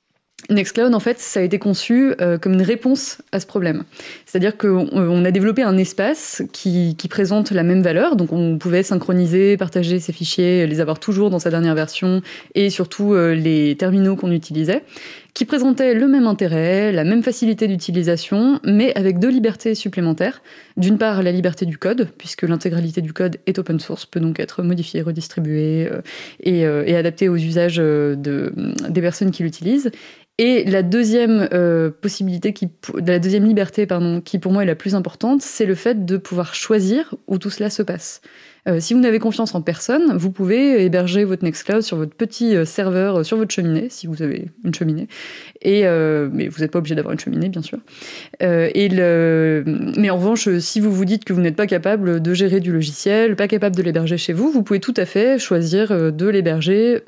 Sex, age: female, 20-39